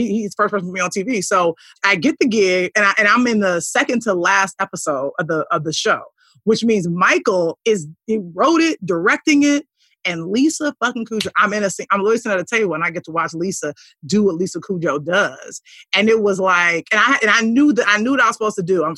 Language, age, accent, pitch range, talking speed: English, 30-49, American, 175-235 Hz, 255 wpm